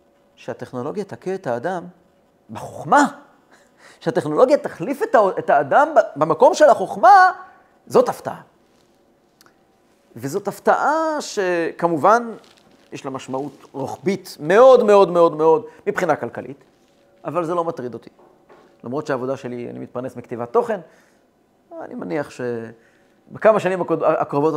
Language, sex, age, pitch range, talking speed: Hebrew, male, 30-49, 125-190 Hz, 105 wpm